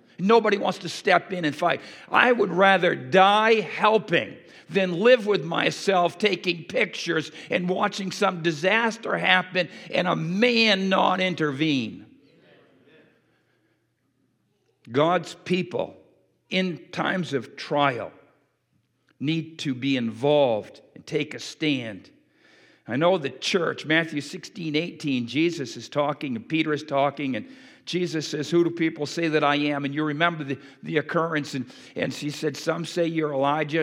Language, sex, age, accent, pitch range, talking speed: English, male, 50-69, American, 150-190 Hz, 140 wpm